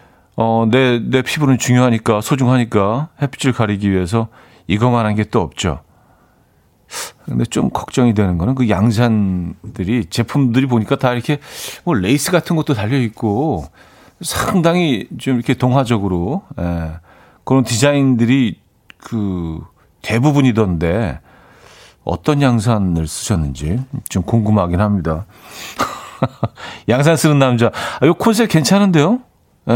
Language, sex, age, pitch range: Korean, male, 40-59, 100-135 Hz